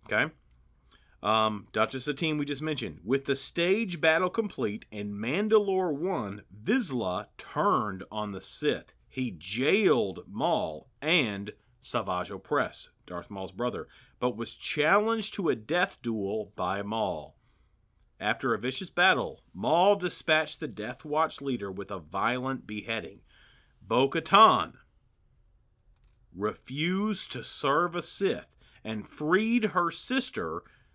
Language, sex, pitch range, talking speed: English, male, 105-155 Hz, 120 wpm